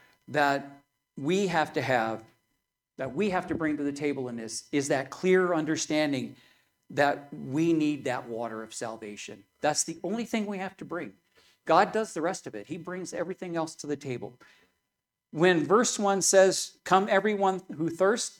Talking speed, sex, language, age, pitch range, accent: 180 wpm, male, English, 50-69, 135-180 Hz, American